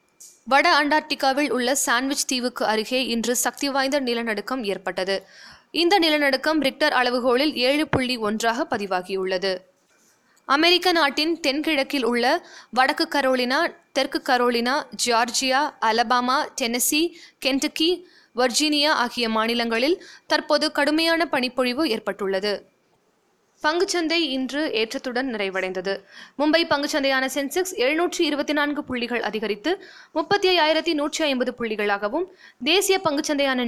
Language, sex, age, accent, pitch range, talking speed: Tamil, female, 20-39, native, 240-310 Hz, 100 wpm